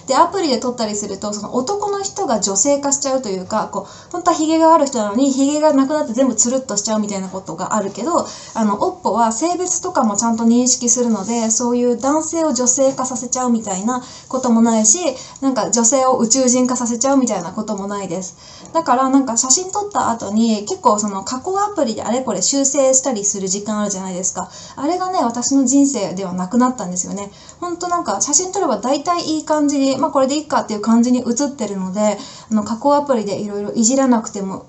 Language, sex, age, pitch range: Japanese, female, 20-39, 210-270 Hz